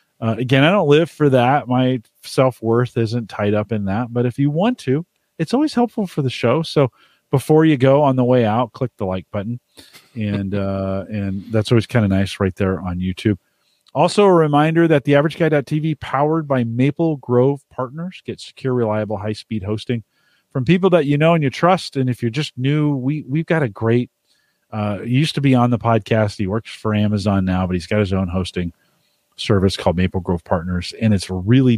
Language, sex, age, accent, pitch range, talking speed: English, male, 40-59, American, 105-150 Hz, 210 wpm